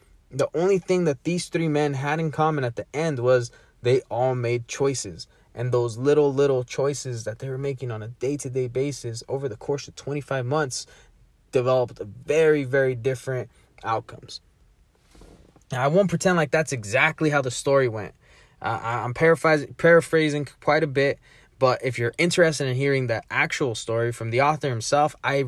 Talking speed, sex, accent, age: 180 wpm, male, American, 20-39